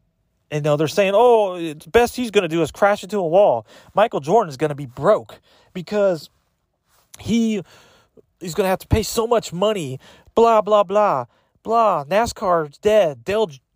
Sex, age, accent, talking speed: male, 30-49, American, 165 wpm